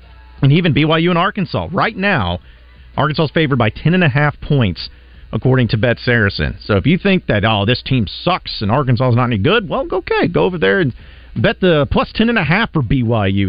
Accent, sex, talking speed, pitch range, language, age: American, male, 195 wpm, 115-160 Hz, English, 40-59